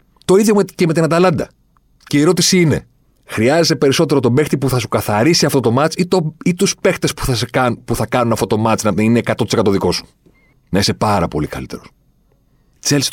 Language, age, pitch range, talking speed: Greek, 40-59, 95-140 Hz, 200 wpm